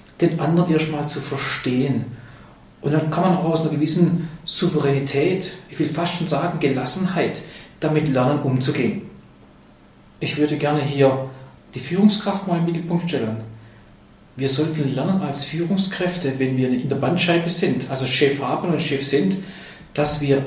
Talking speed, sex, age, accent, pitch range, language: 150 wpm, male, 40-59, German, 145-180 Hz, German